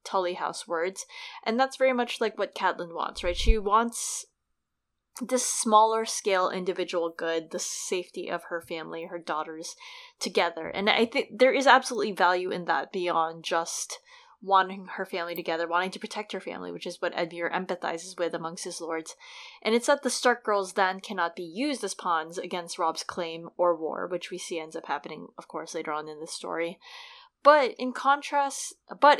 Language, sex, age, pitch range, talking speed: English, female, 20-39, 170-235 Hz, 185 wpm